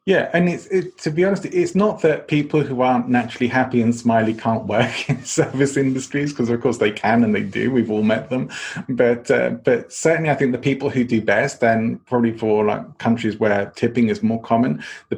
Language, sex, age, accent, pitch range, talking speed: English, male, 30-49, British, 110-125 Hz, 220 wpm